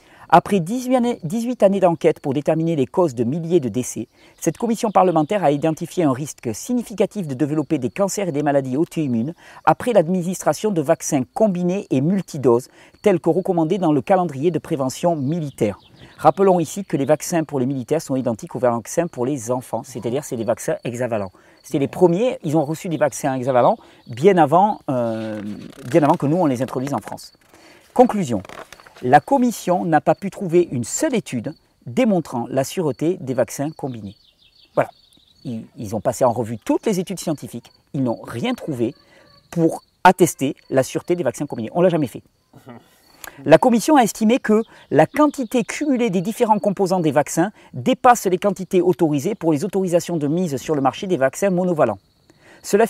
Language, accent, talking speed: French, French, 180 wpm